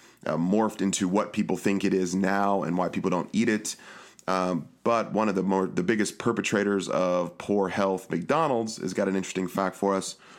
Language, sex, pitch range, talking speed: English, male, 95-115 Hz, 200 wpm